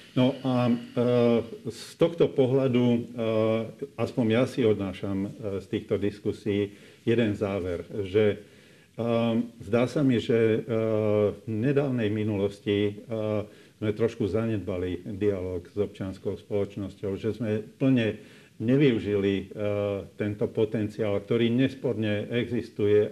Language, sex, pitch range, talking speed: Slovak, male, 105-120 Hz, 100 wpm